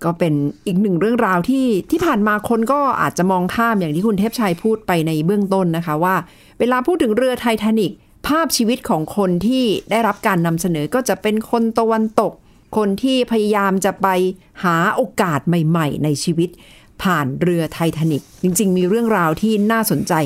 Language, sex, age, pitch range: Thai, female, 60-79, 165-220 Hz